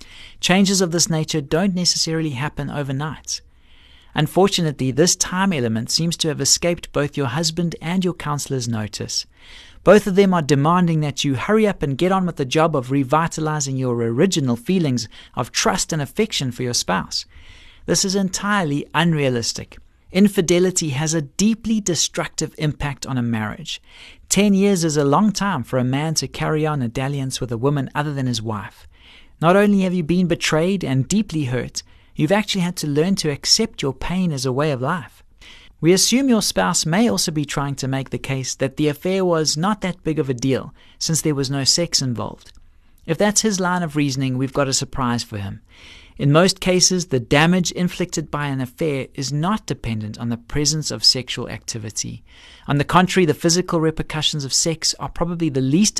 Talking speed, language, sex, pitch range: 190 wpm, English, male, 125-175 Hz